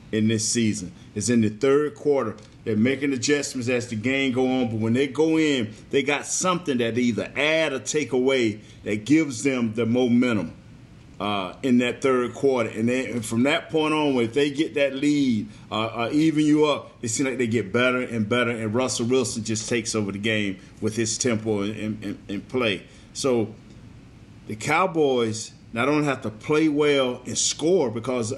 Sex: male